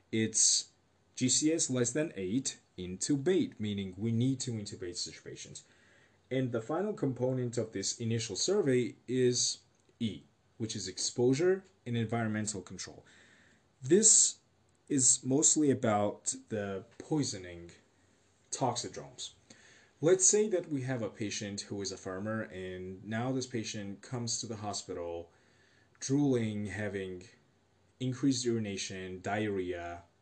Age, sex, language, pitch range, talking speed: 30-49, male, English, 100-125 Hz, 115 wpm